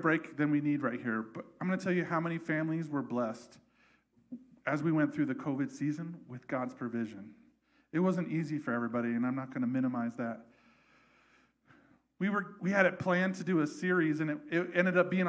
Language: English